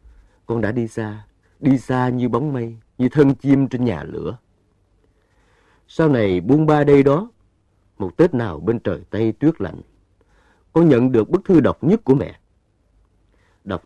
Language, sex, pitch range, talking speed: Vietnamese, male, 95-140 Hz, 170 wpm